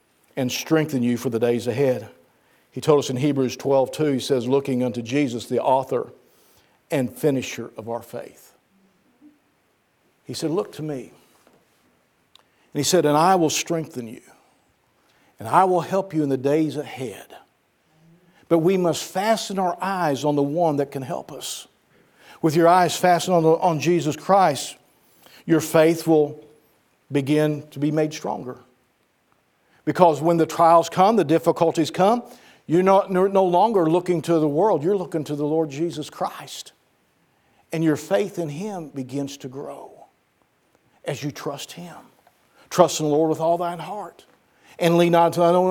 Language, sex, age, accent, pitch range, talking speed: English, male, 50-69, American, 145-175 Hz, 165 wpm